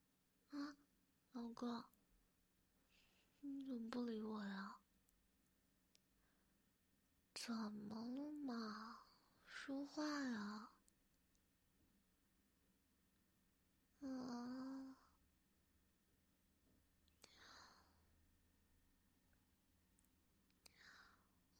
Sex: female